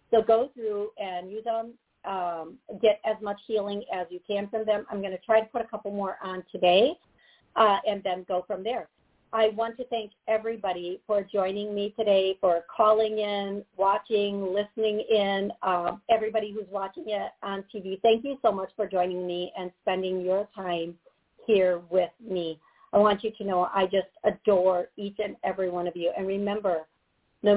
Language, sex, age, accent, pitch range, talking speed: English, female, 50-69, American, 180-210 Hz, 185 wpm